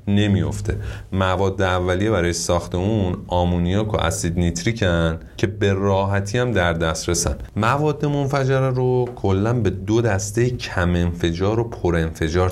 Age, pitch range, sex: 30-49, 85-110 Hz, male